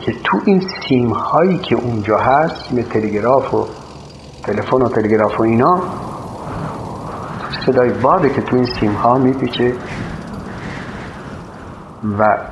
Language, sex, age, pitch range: Persian, male, 50-69, 105-150 Hz